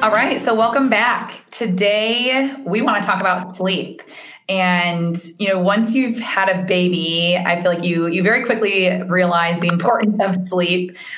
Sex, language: female, English